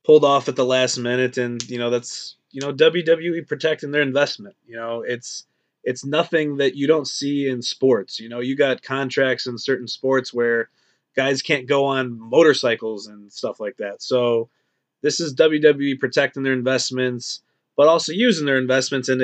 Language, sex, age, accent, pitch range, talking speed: English, male, 20-39, American, 120-140 Hz, 180 wpm